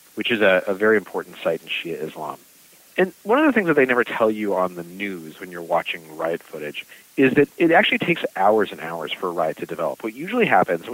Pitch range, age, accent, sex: 95-135 Hz, 40-59, American, male